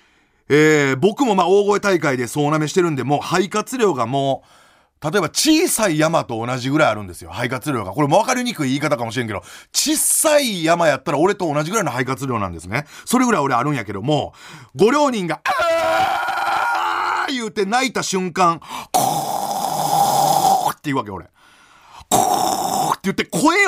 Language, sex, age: Japanese, male, 40-59